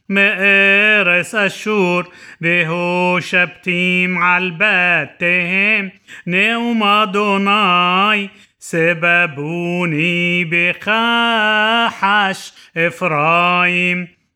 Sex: male